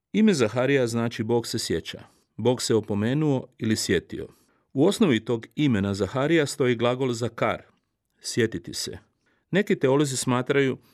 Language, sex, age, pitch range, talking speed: Croatian, male, 40-59, 115-140 Hz, 135 wpm